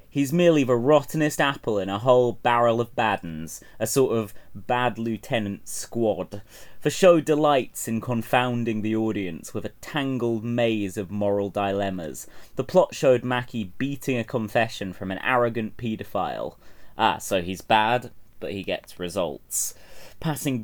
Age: 30-49